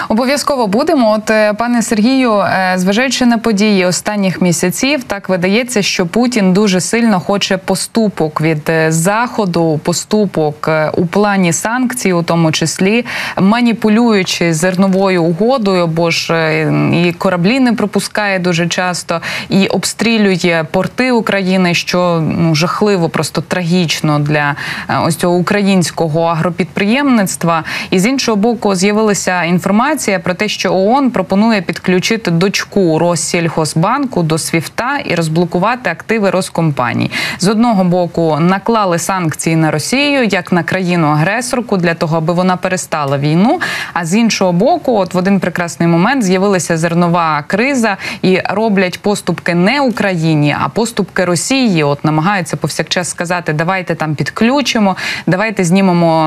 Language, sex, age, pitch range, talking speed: Ukrainian, female, 20-39, 170-215 Hz, 125 wpm